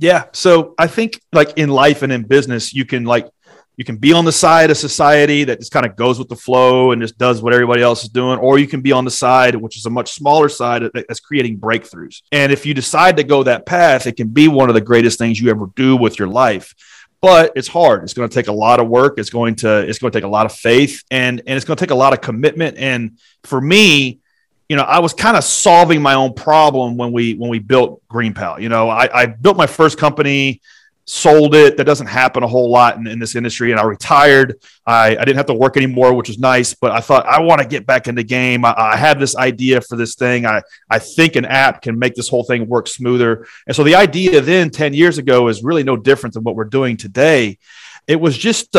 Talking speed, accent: 260 wpm, American